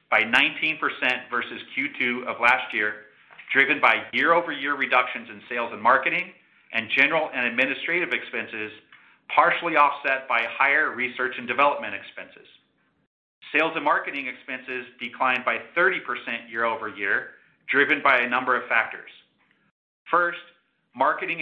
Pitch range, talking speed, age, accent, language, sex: 120-145 Hz, 125 wpm, 40-59, American, English, male